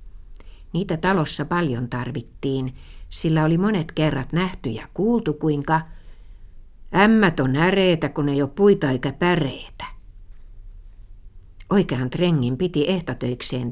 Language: Finnish